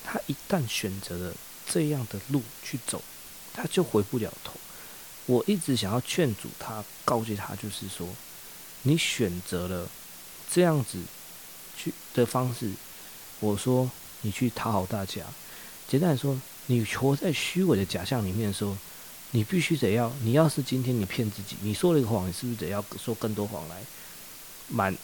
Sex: male